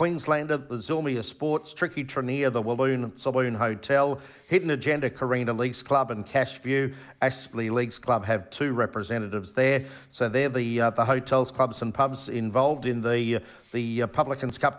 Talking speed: 165 wpm